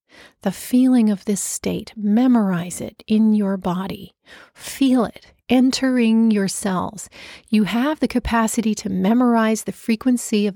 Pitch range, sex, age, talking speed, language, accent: 205-245 Hz, female, 30-49, 135 wpm, English, American